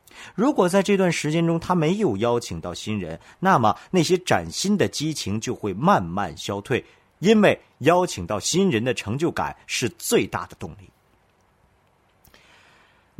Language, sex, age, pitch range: Chinese, male, 50-69, 100-160 Hz